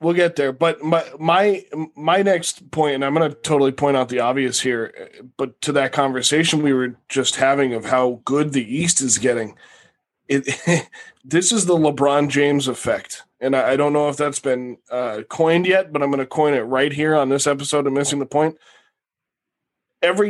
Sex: male